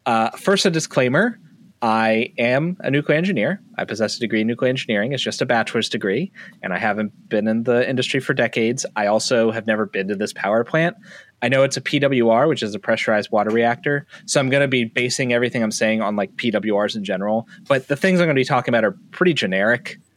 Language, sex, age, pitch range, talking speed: English, male, 30-49, 110-140 Hz, 225 wpm